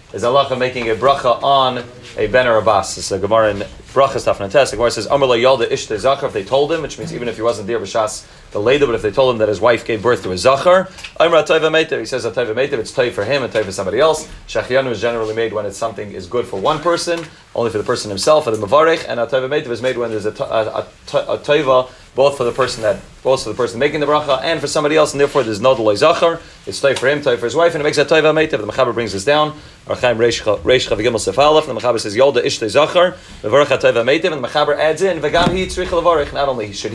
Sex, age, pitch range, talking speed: male, 30-49, 120-160 Hz, 240 wpm